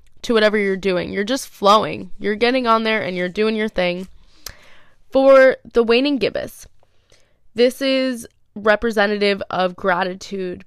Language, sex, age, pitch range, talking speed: English, female, 20-39, 185-220 Hz, 140 wpm